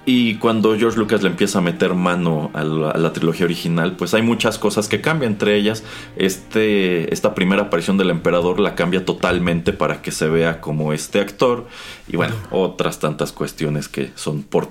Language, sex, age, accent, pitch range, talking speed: Spanish, male, 30-49, Mexican, 85-100 Hz, 190 wpm